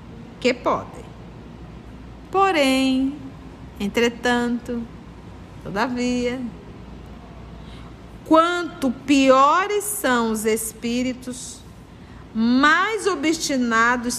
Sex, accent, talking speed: female, Brazilian, 50 wpm